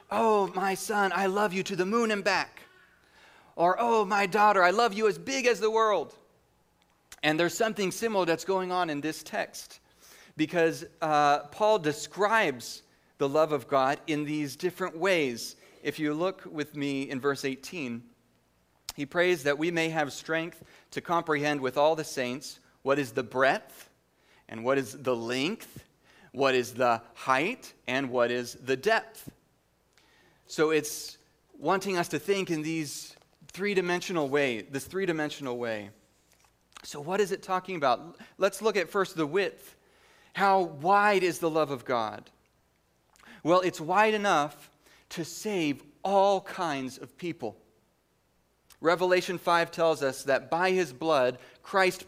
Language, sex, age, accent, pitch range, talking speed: English, male, 30-49, American, 140-190 Hz, 155 wpm